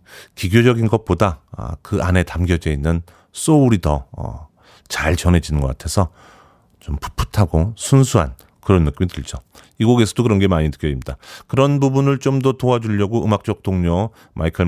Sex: male